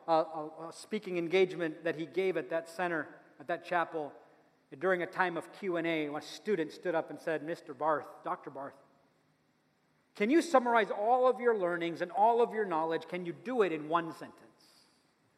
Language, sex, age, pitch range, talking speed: English, male, 40-59, 155-205 Hz, 185 wpm